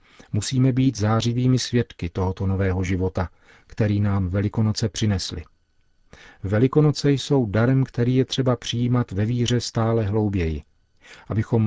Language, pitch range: Czech, 95-115 Hz